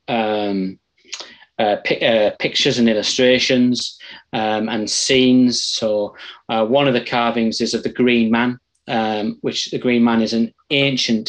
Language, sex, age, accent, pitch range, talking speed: English, male, 20-39, British, 110-125 Hz, 155 wpm